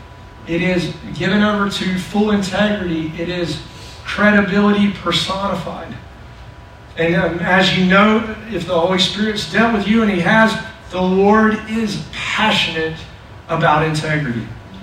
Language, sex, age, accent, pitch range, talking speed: English, male, 40-59, American, 165-210 Hz, 130 wpm